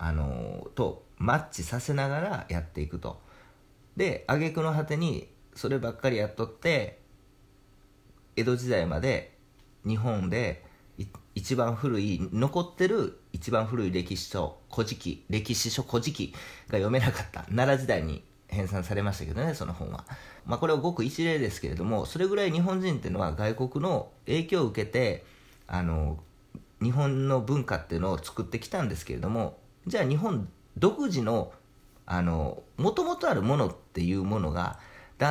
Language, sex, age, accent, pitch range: Japanese, male, 40-59, native, 90-130 Hz